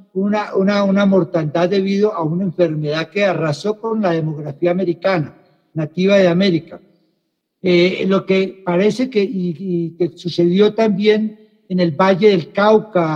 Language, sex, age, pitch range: English, male, 60-79, 175-210 Hz